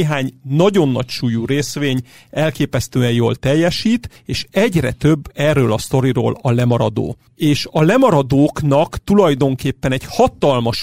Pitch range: 125-165 Hz